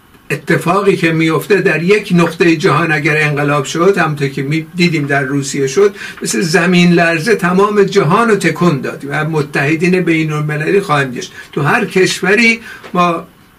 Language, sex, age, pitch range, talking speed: Persian, male, 60-79, 155-190 Hz, 145 wpm